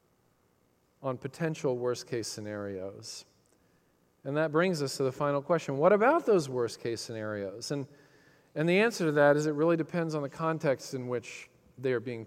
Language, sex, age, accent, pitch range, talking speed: English, male, 40-59, American, 135-175 Hz, 170 wpm